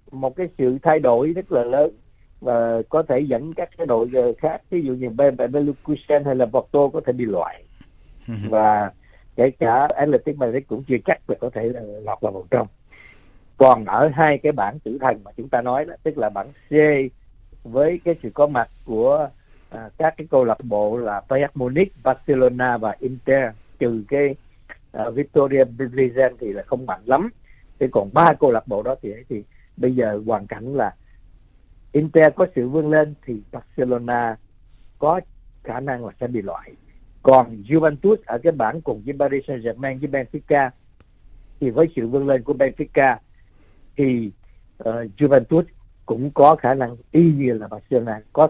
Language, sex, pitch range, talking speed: Vietnamese, male, 115-150 Hz, 180 wpm